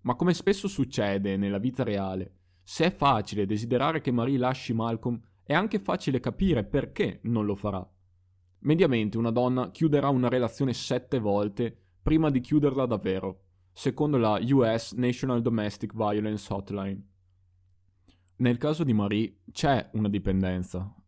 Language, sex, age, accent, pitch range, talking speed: Italian, male, 20-39, native, 100-130 Hz, 140 wpm